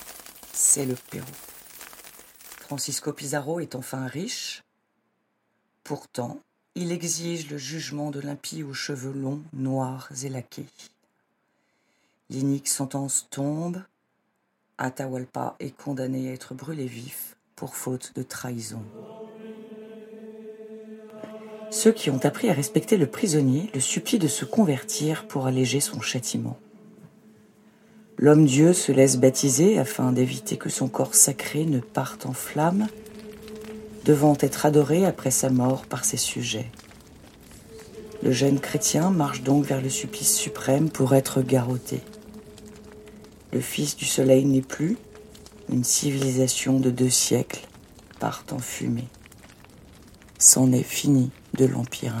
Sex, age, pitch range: female, 40-59, 130-185 Hz